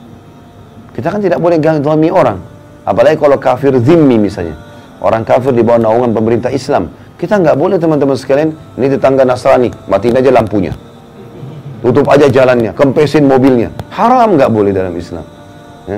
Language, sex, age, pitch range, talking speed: Indonesian, male, 30-49, 115-150 Hz, 155 wpm